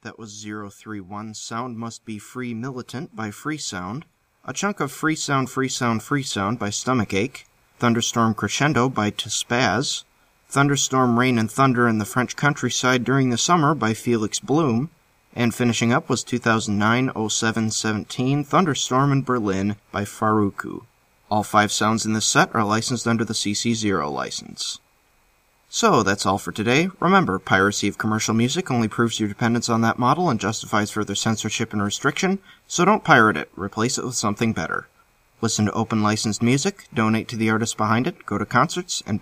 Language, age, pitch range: English, 20-39, 105-135 Hz